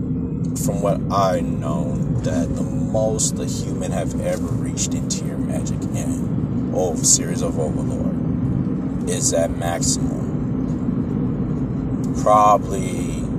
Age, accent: 30-49, American